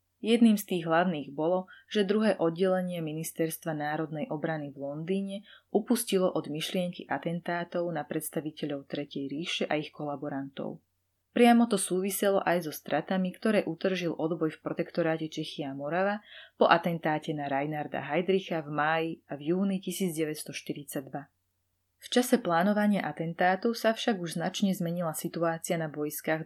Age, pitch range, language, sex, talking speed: 30-49, 155-195 Hz, Slovak, female, 140 wpm